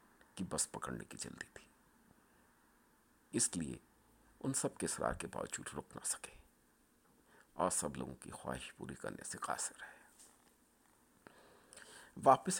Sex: male